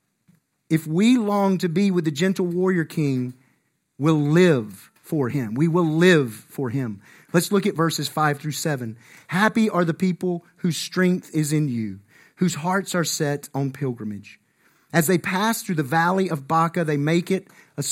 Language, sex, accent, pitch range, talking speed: English, male, American, 150-205 Hz, 180 wpm